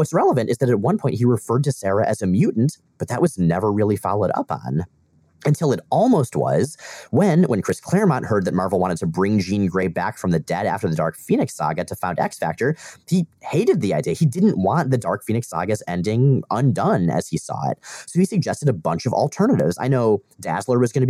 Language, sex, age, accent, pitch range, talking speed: English, male, 30-49, American, 90-130 Hz, 230 wpm